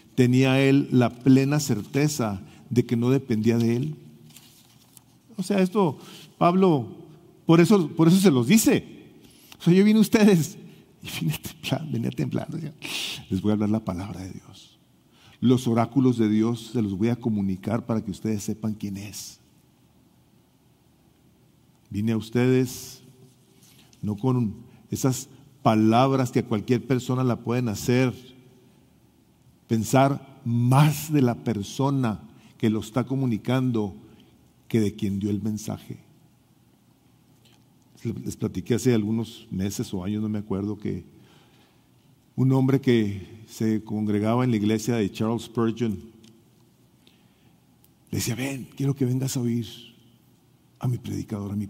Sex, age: male, 50-69